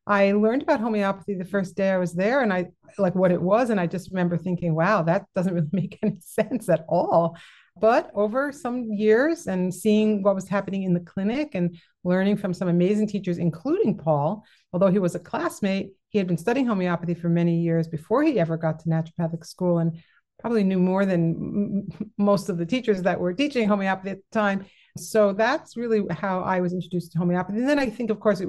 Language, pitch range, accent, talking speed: English, 175-210 Hz, American, 215 wpm